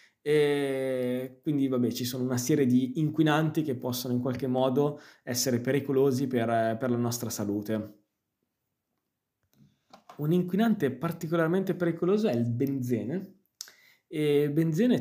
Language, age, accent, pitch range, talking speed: Italian, 20-39, native, 125-150 Hz, 120 wpm